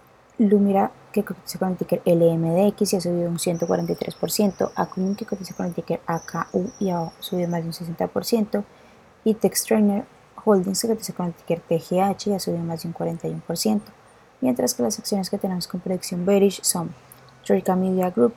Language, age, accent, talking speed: Spanish, 20-39, Colombian, 180 wpm